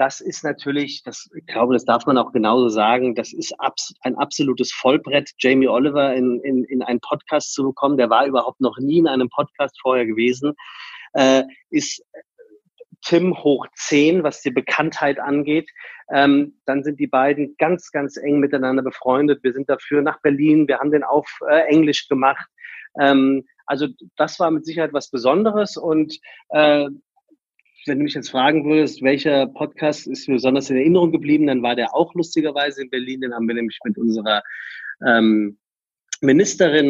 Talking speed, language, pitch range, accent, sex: 165 wpm, German, 125-150 Hz, German, male